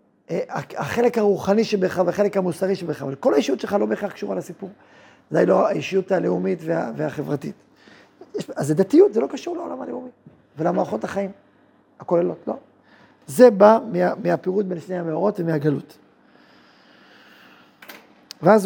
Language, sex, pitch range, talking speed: Hebrew, male, 170-210 Hz, 125 wpm